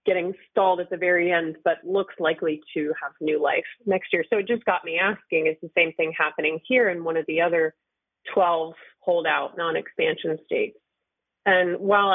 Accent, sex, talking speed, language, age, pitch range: American, female, 190 wpm, English, 30-49, 165-225 Hz